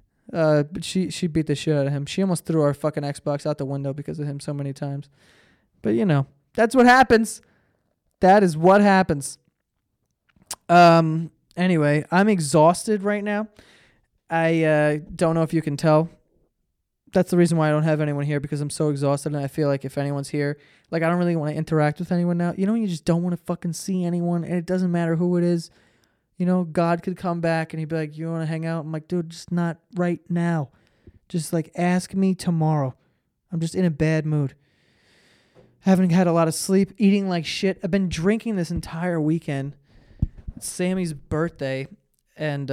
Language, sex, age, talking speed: English, male, 20-39, 205 wpm